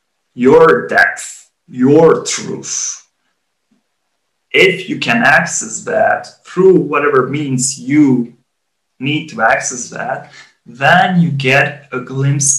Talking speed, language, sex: 105 wpm, English, male